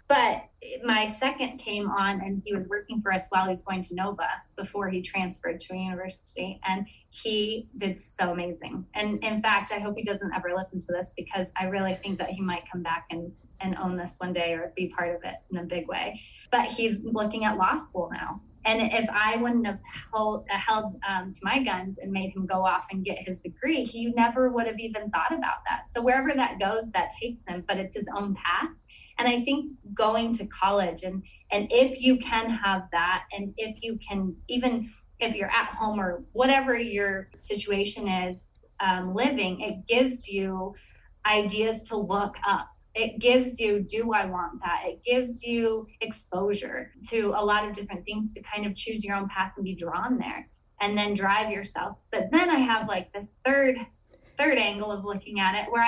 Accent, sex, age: American, female, 20-39